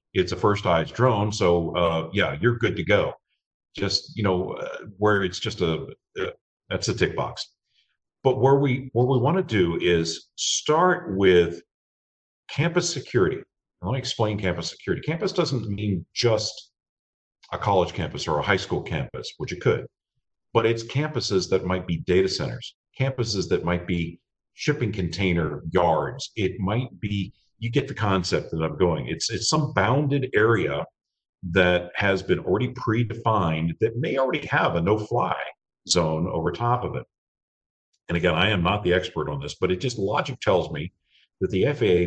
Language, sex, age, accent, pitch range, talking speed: English, male, 50-69, American, 90-125 Hz, 175 wpm